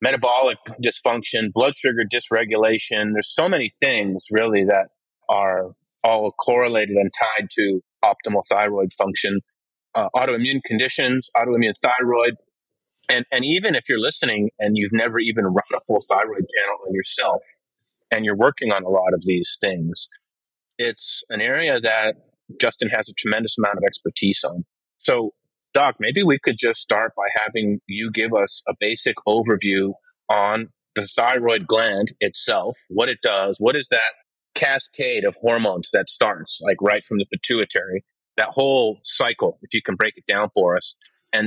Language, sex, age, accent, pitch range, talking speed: English, male, 30-49, American, 100-120 Hz, 160 wpm